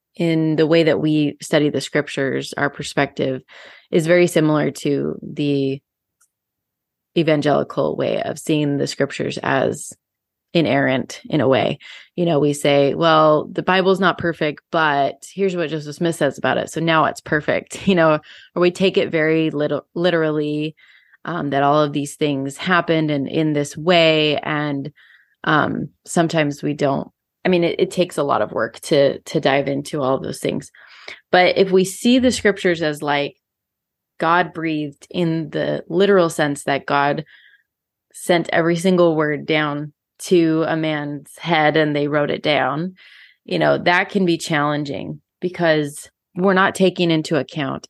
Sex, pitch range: female, 145-175 Hz